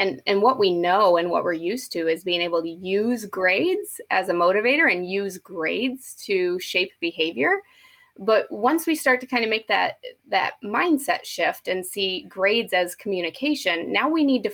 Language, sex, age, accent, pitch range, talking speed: English, female, 20-39, American, 185-265 Hz, 190 wpm